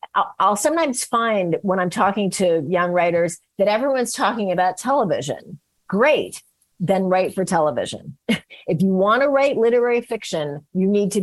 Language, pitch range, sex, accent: English, 185-240 Hz, female, American